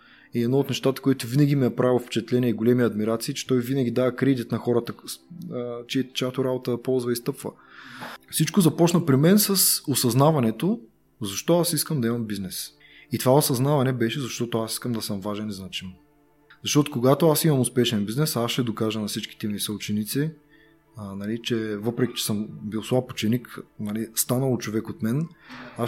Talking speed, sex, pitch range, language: 185 wpm, male, 115-145 Hz, Bulgarian